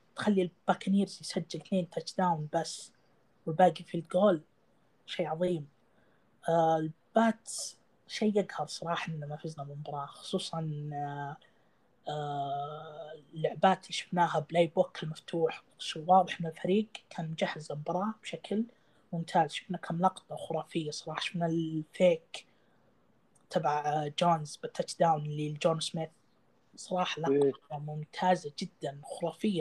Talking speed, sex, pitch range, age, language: 110 wpm, female, 155-190 Hz, 20-39, Arabic